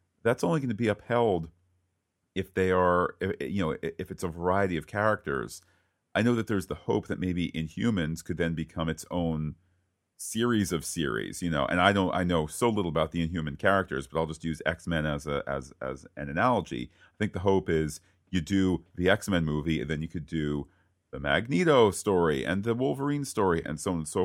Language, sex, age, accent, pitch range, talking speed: English, male, 40-59, American, 80-100 Hz, 220 wpm